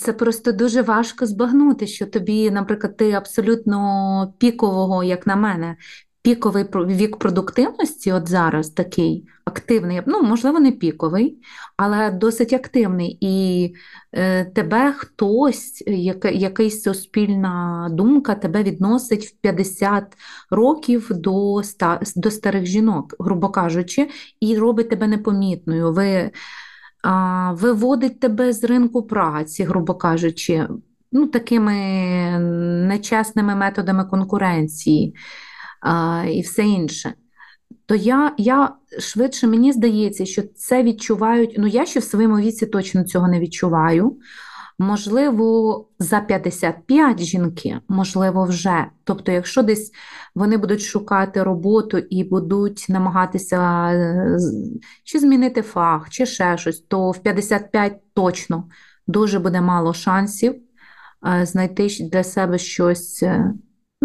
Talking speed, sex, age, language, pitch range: 115 wpm, female, 30-49, Ukrainian, 185-225 Hz